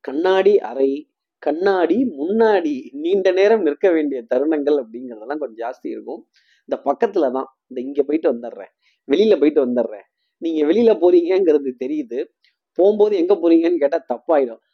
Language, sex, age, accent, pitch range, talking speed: Tamil, male, 30-49, native, 140-215 Hz, 130 wpm